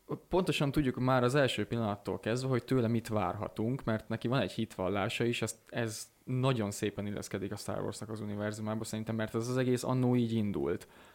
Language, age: Hungarian, 20-39